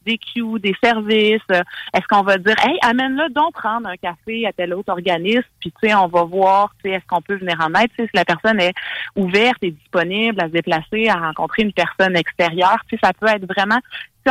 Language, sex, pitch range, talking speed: French, female, 180-220 Hz, 215 wpm